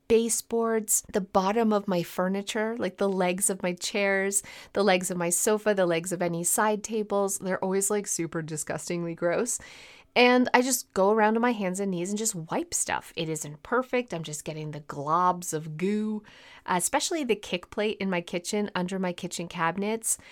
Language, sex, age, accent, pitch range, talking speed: English, female, 30-49, American, 175-230 Hz, 190 wpm